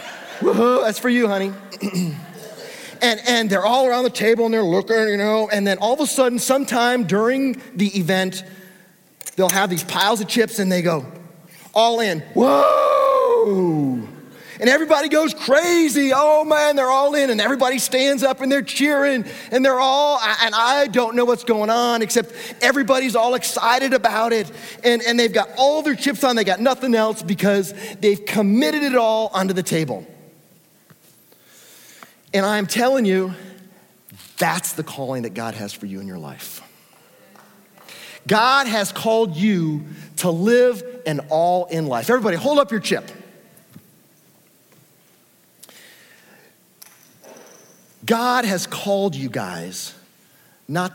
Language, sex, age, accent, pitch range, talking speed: English, male, 30-49, American, 170-250 Hz, 150 wpm